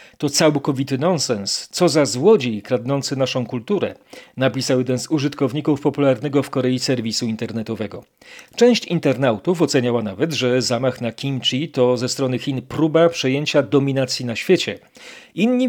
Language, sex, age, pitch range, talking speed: Polish, male, 40-59, 130-180 Hz, 140 wpm